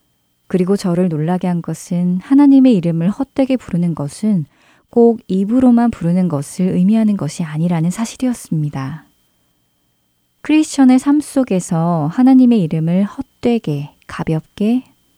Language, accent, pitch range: Korean, native, 155-225 Hz